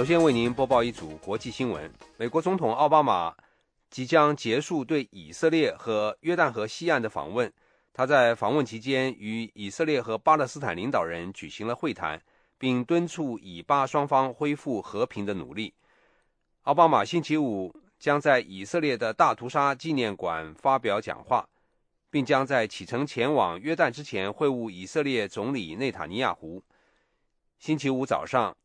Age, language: 30-49, English